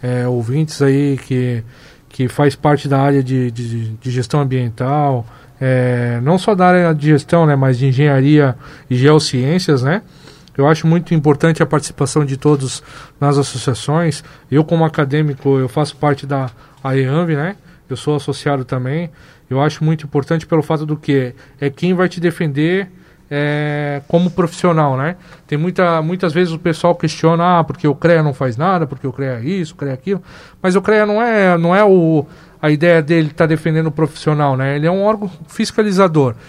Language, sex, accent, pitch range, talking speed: Portuguese, male, Brazilian, 140-175 Hz, 185 wpm